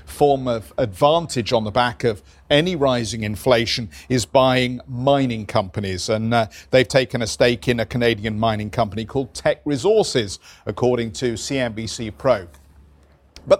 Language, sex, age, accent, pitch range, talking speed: English, male, 50-69, British, 125-165 Hz, 145 wpm